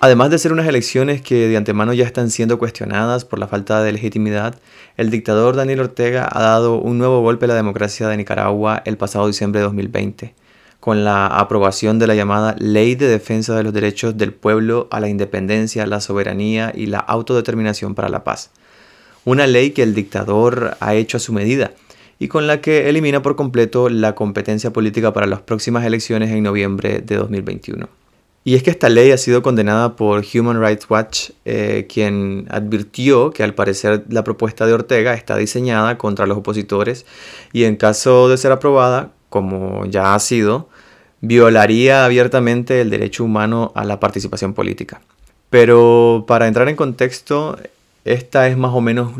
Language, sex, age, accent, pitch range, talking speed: Spanish, male, 20-39, Argentinian, 105-120 Hz, 175 wpm